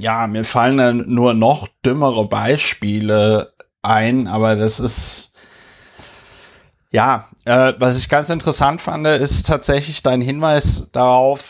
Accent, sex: German, male